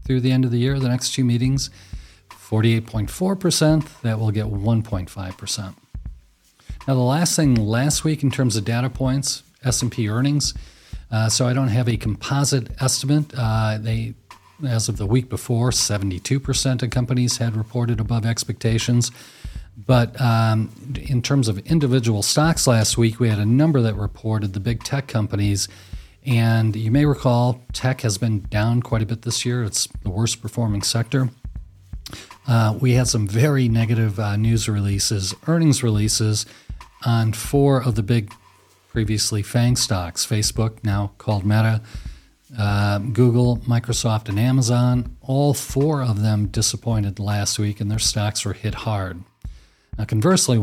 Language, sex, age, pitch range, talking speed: English, male, 40-59, 105-125 Hz, 155 wpm